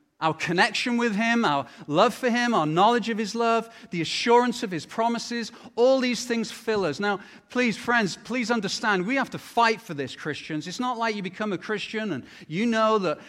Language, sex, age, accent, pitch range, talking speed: English, male, 30-49, British, 190-245 Hz, 210 wpm